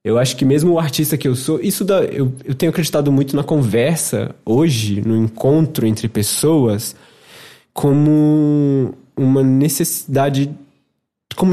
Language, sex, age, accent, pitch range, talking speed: Portuguese, male, 20-39, Brazilian, 110-150 Hz, 140 wpm